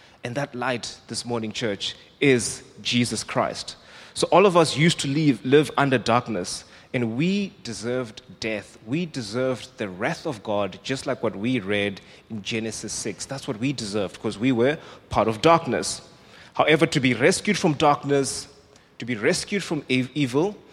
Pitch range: 110-145 Hz